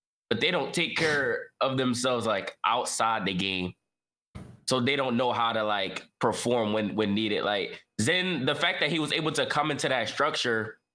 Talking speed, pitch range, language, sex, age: 190 wpm, 110-155 Hz, English, male, 20-39